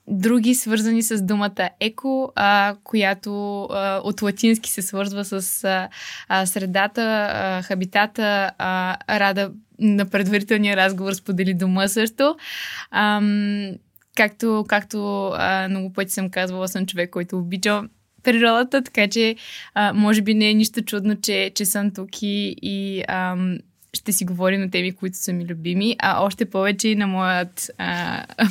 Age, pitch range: 20-39, 195-230 Hz